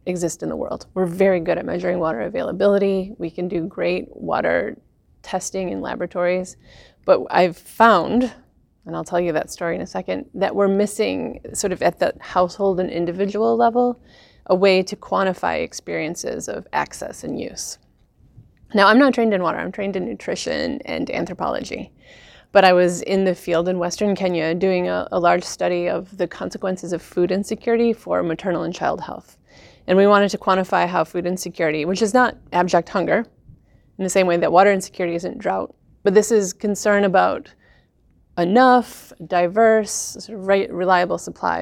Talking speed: 170 wpm